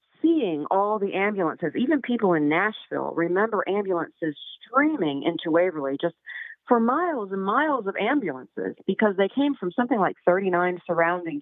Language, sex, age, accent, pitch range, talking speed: English, female, 40-59, American, 150-190 Hz, 145 wpm